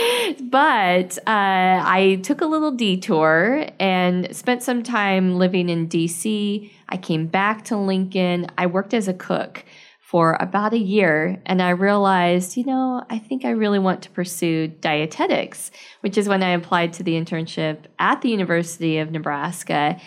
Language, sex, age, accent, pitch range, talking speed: English, female, 20-39, American, 170-205 Hz, 160 wpm